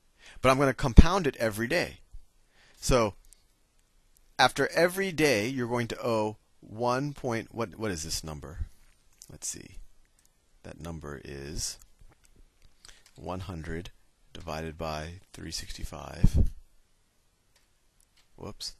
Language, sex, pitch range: English, male, 80-120 Hz